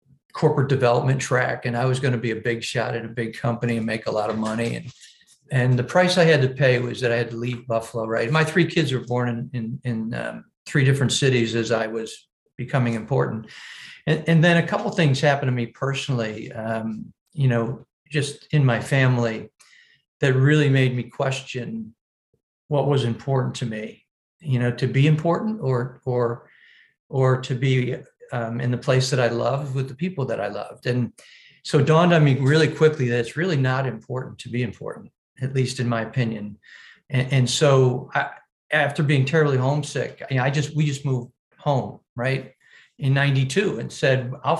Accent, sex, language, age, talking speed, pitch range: American, male, English, 50-69, 200 wpm, 120-145 Hz